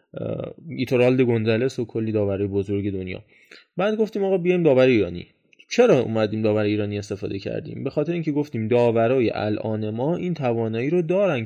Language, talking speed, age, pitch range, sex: Persian, 155 wpm, 20-39, 120-160 Hz, male